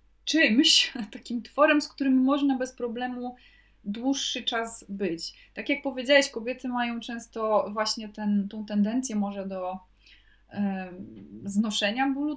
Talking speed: 125 wpm